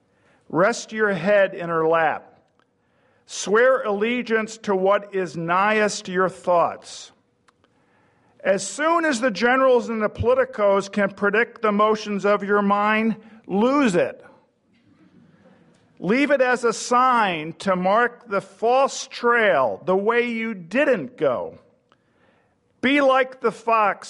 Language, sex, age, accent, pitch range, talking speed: English, male, 50-69, American, 190-230 Hz, 125 wpm